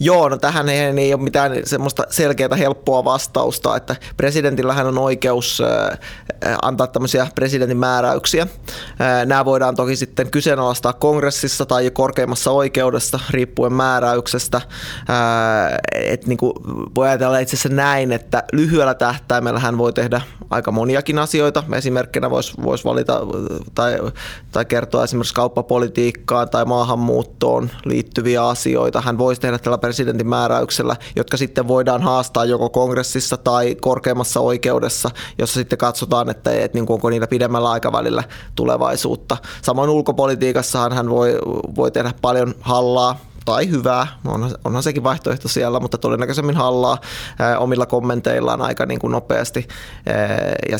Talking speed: 120 wpm